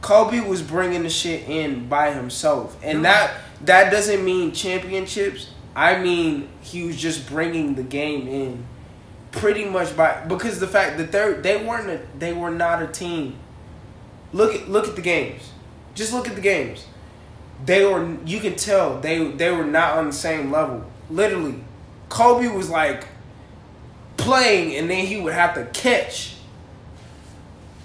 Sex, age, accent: male, 20-39, American